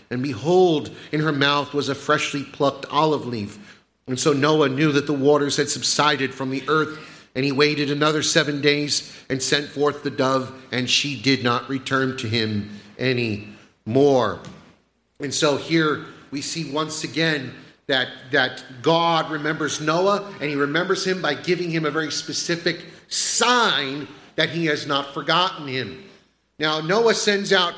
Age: 40-59